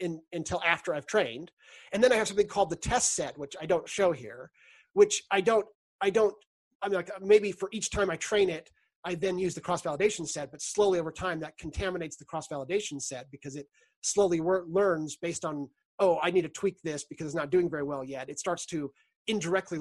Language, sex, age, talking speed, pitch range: English, male, 30-49, 220 wpm, 155-195 Hz